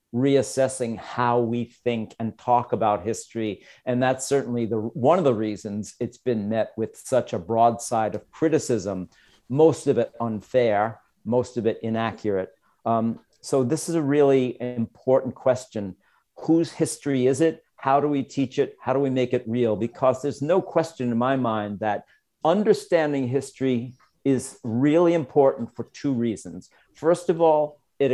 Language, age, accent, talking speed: English, 50-69, American, 160 wpm